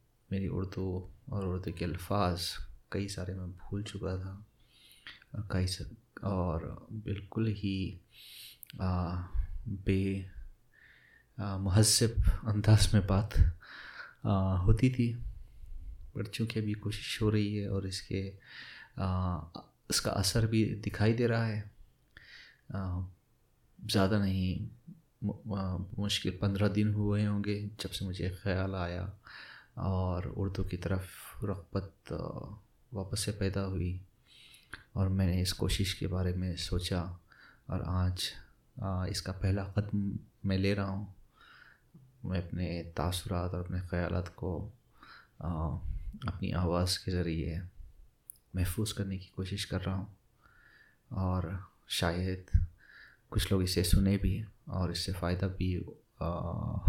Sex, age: male, 30-49